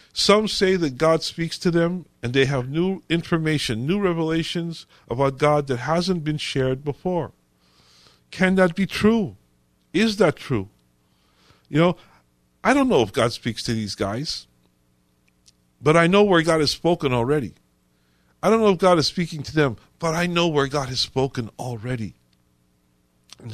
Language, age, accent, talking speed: English, 50-69, American, 165 wpm